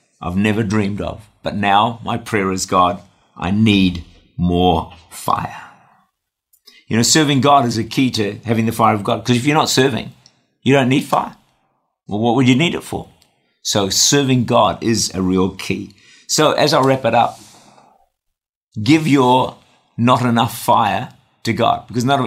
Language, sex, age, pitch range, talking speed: English, male, 50-69, 100-125 Hz, 170 wpm